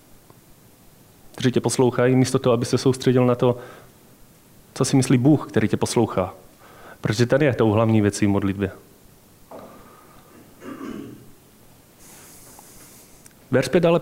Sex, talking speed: male, 110 wpm